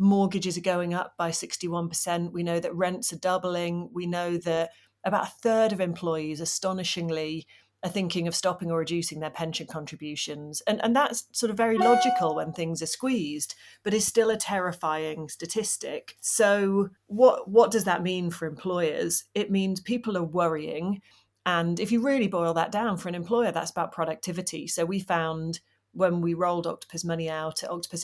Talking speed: 180 wpm